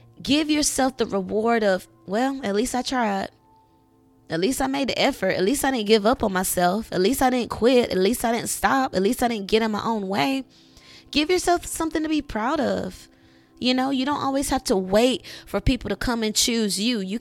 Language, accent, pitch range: English, American, 185-245 Hz